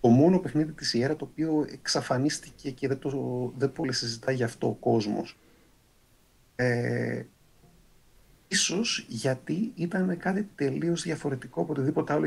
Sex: male